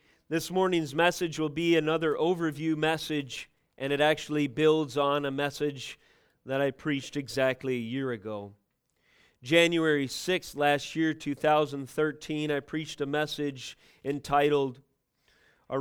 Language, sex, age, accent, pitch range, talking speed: English, male, 30-49, American, 140-155 Hz, 125 wpm